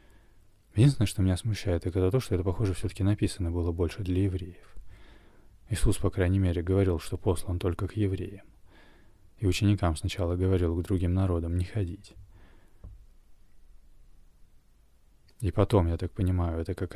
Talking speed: 145 wpm